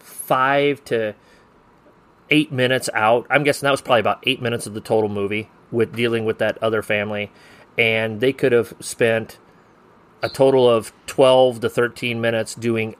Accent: American